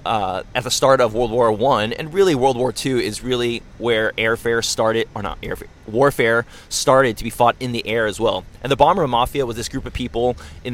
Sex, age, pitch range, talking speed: male, 20-39, 115-135 Hz, 230 wpm